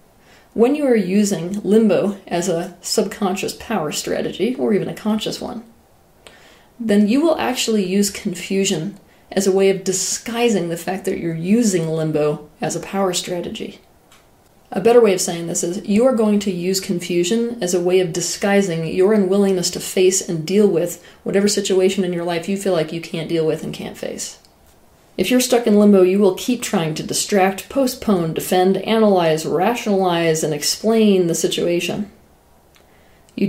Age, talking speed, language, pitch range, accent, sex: 30-49, 170 wpm, English, 175-215 Hz, American, female